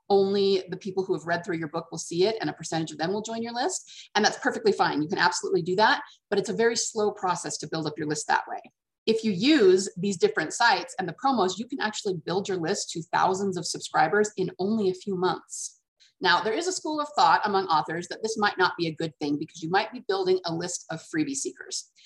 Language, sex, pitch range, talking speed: English, female, 185-260 Hz, 255 wpm